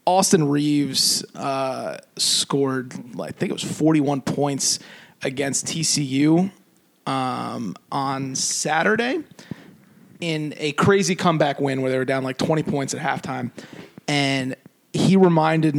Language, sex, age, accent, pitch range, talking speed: English, male, 30-49, American, 135-155 Hz, 120 wpm